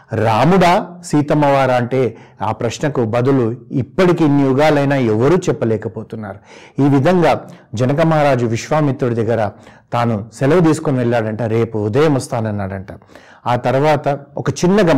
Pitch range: 115-145 Hz